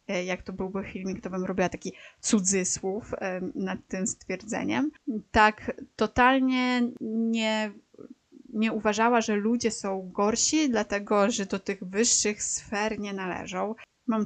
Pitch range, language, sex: 195-245 Hz, Polish, female